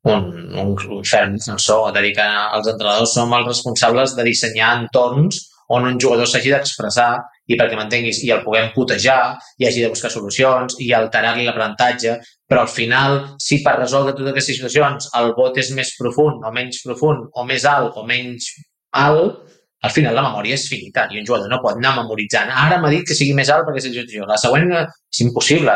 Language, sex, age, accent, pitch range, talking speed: English, male, 20-39, Spanish, 115-140 Hz, 200 wpm